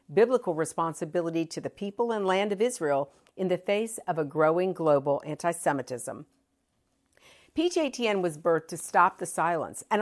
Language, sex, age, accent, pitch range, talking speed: English, female, 50-69, American, 165-225 Hz, 150 wpm